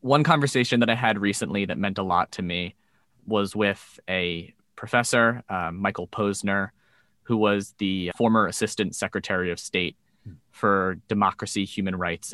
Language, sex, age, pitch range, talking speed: English, male, 20-39, 90-110 Hz, 150 wpm